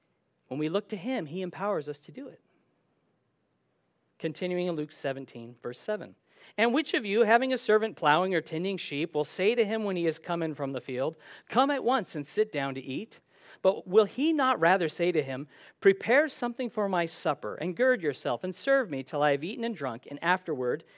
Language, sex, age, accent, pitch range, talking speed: English, male, 50-69, American, 145-215 Hz, 210 wpm